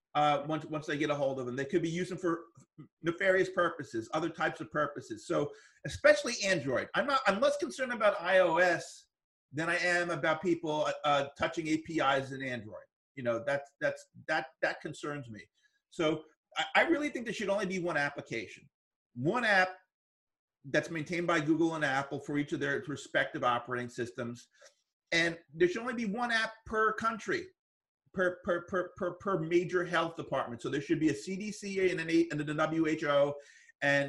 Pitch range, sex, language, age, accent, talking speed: 145-180 Hz, male, English, 40-59, American, 180 wpm